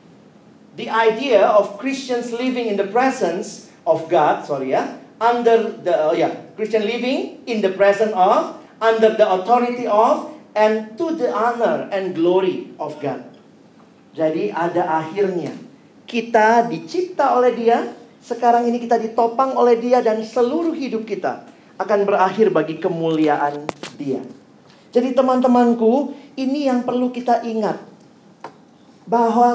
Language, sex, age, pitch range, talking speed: Indonesian, male, 40-59, 180-245 Hz, 130 wpm